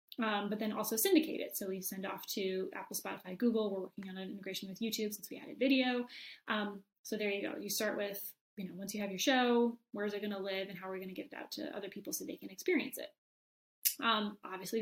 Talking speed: 260 wpm